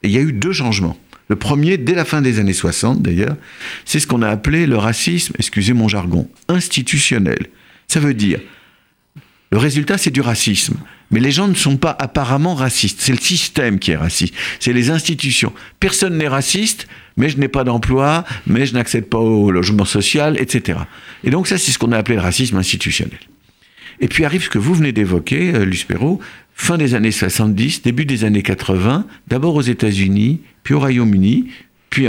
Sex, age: male, 50-69